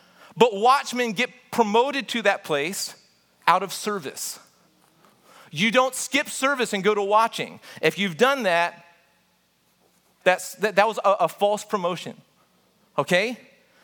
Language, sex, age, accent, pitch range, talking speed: English, male, 30-49, American, 195-240 Hz, 135 wpm